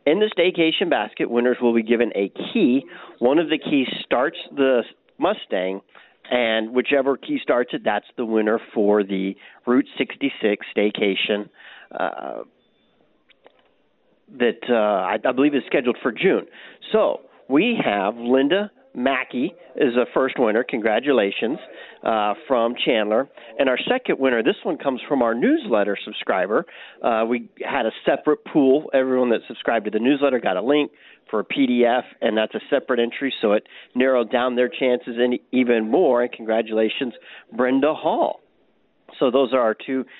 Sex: male